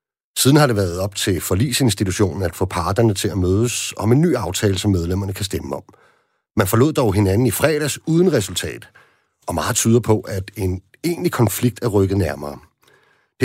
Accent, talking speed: native, 190 wpm